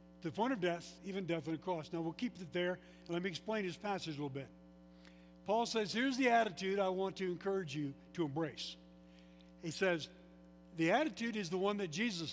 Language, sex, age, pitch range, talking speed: English, male, 60-79, 155-205 Hz, 215 wpm